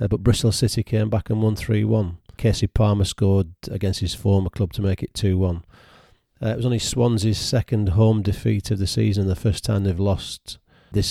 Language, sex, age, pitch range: English, male, 40-59, 95-110 Hz